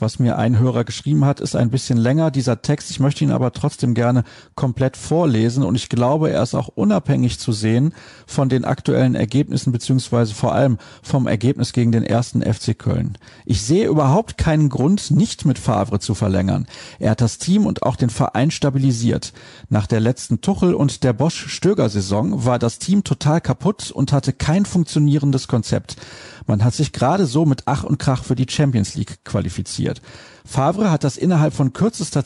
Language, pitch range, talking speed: German, 120-150 Hz, 185 wpm